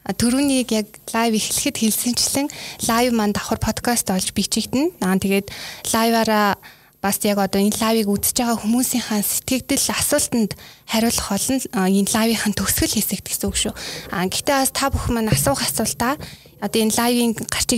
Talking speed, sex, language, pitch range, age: 120 wpm, female, Russian, 200-240 Hz, 20-39